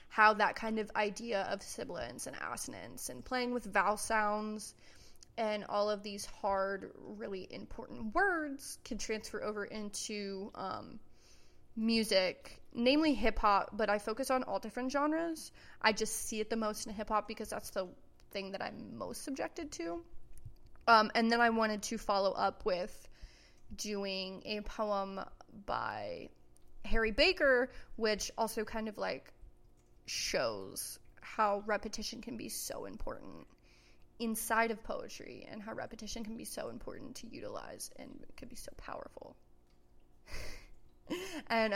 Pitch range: 205-230 Hz